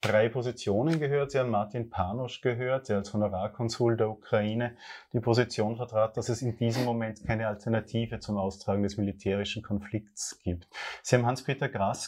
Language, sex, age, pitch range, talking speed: German, male, 30-49, 110-135 Hz, 165 wpm